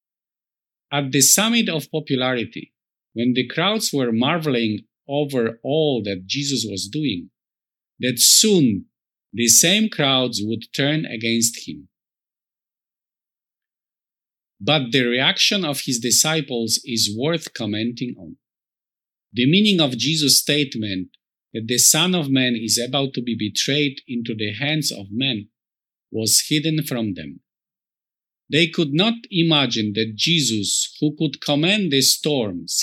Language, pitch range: English, 115-155 Hz